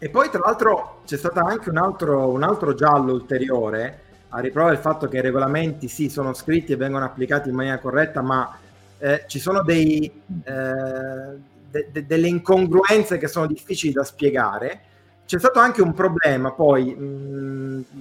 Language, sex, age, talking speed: Italian, male, 30-49, 170 wpm